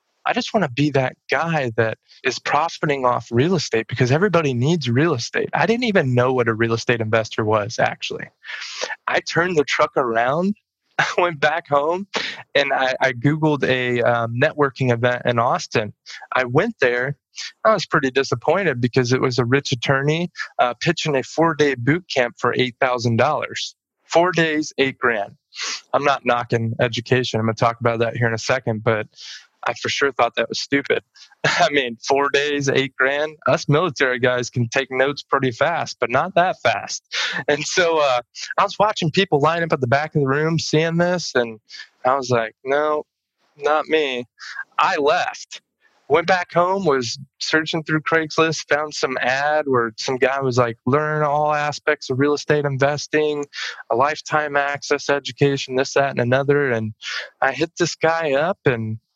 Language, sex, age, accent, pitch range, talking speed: English, male, 20-39, American, 125-155 Hz, 180 wpm